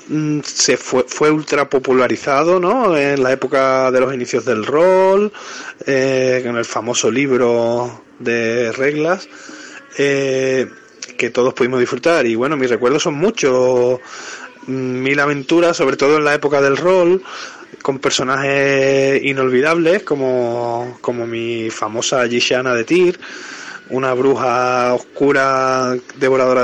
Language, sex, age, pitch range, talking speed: Spanish, male, 20-39, 125-150 Hz, 125 wpm